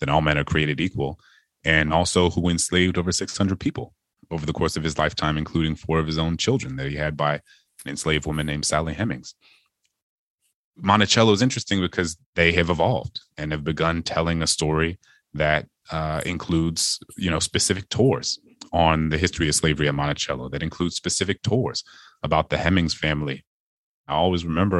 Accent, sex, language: American, male, English